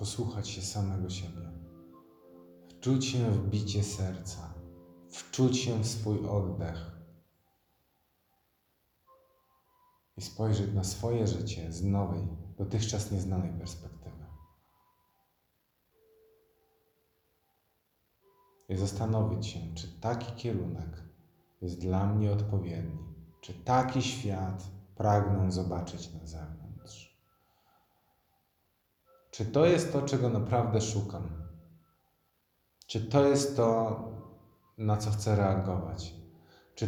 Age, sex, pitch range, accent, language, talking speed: 40-59, male, 85-115 Hz, native, Polish, 95 wpm